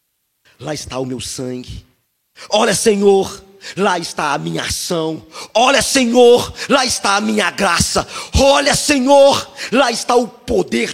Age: 40-59